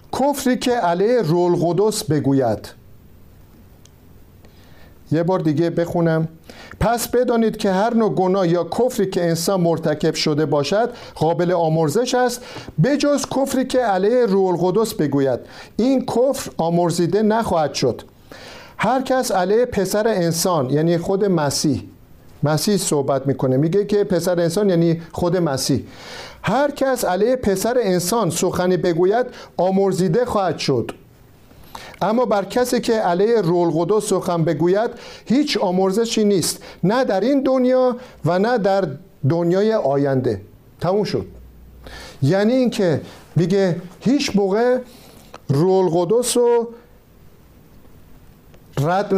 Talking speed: 120 wpm